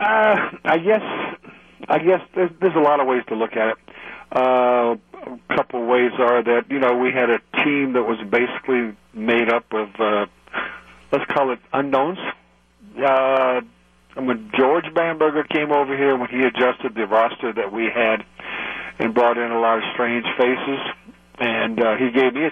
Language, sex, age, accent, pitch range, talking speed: English, male, 50-69, American, 120-150 Hz, 180 wpm